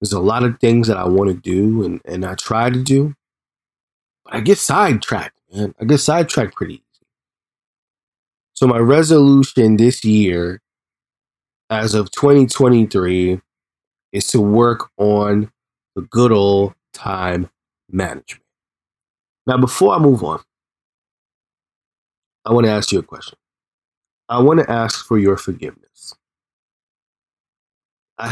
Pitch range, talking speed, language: 95-125 Hz, 135 wpm, English